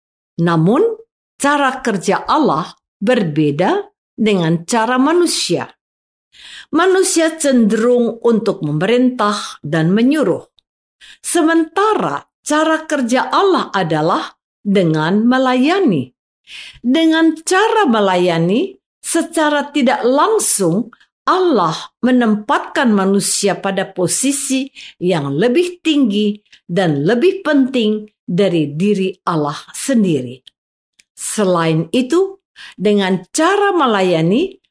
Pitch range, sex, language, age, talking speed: 190-295 Hz, female, Indonesian, 50-69, 80 wpm